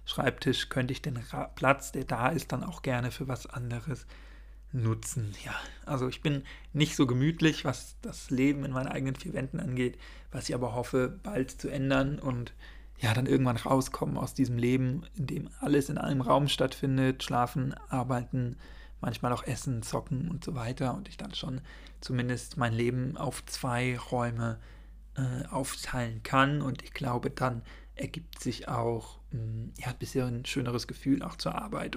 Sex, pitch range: male, 125-140 Hz